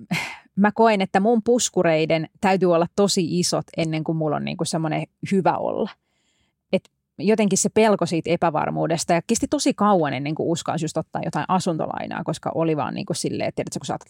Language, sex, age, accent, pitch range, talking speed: Finnish, female, 30-49, native, 165-230 Hz, 180 wpm